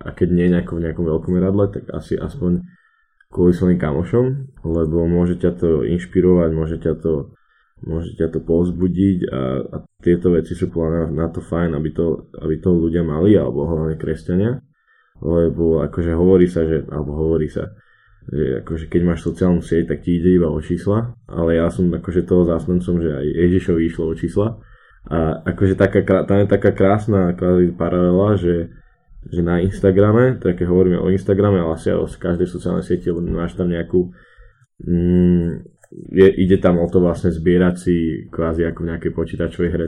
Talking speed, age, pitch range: 180 wpm, 10-29, 85-95 Hz